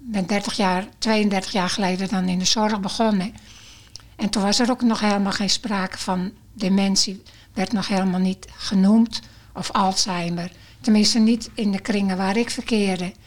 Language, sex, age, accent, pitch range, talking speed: Dutch, female, 60-79, Dutch, 185-215 Hz, 170 wpm